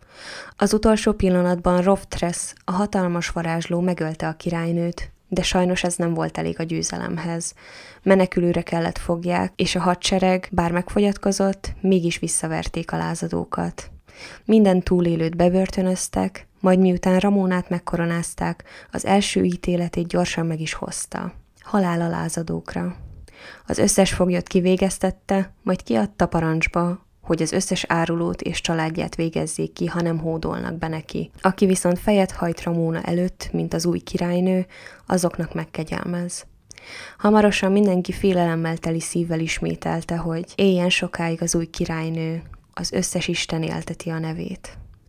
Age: 20-39